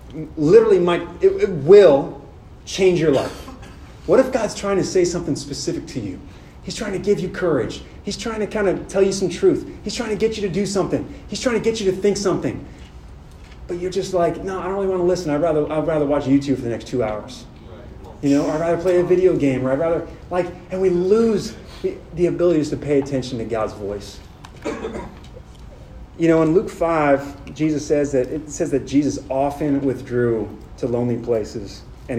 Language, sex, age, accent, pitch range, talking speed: English, male, 30-49, American, 130-180 Hz, 215 wpm